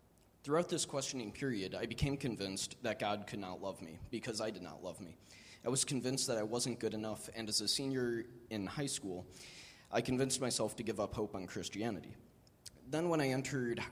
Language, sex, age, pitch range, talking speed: English, male, 20-39, 100-125 Hz, 205 wpm